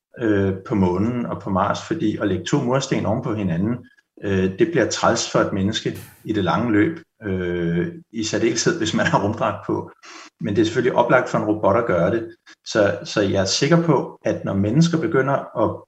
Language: Danish